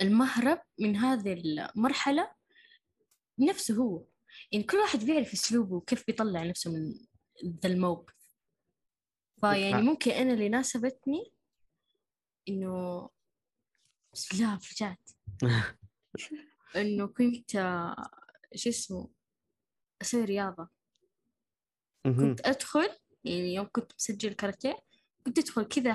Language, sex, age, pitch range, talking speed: Arabic, female, 20-39, 190-260 Hz, 100 wpm